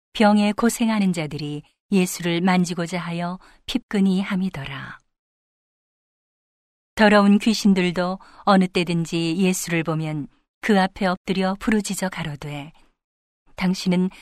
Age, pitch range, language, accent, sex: 40-59, 165-205 Hz, Korean, native, female